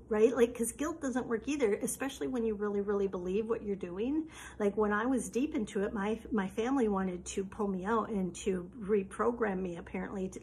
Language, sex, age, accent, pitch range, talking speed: English, female, 50-69, American, 205-240 Hz, 215 wpm